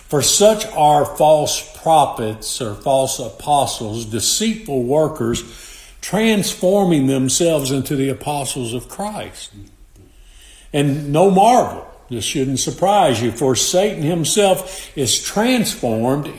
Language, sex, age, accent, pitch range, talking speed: English, male, 50-69, American, 125-165 Hz, 105 wpm